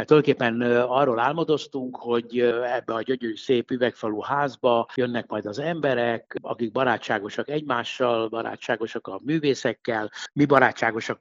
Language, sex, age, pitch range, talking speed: Hungarian, male, 60-79, 110-140 Hz, 120 wpm